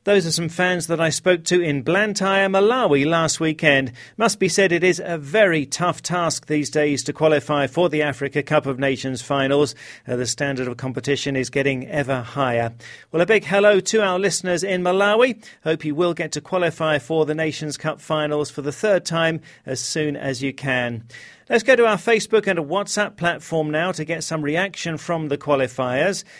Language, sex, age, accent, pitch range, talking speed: English, male, 40-59, British, 140-180 Hz, 200 wpm